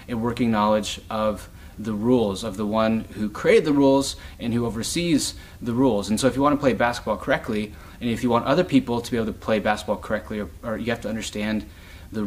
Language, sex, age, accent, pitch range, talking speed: English, male, 30-49, American, 100-130 Hz, 230 wpm